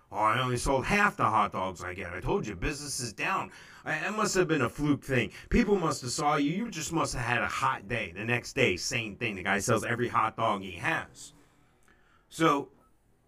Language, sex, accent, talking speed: English, male, American, 220 wpm